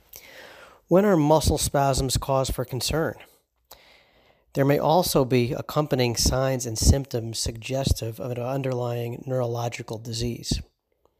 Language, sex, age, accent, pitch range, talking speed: English, male, 40-59, American, 115-135 Hz, 115 wpm